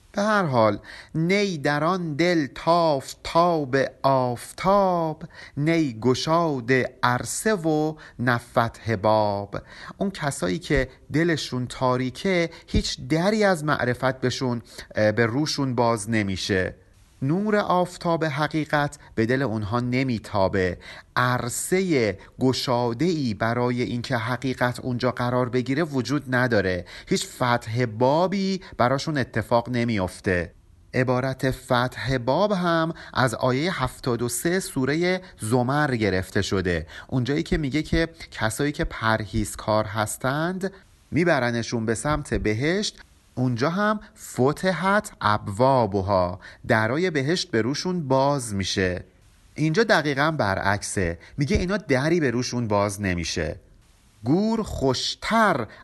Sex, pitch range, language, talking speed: male, 110-155 Hz, Persian, 105 wpm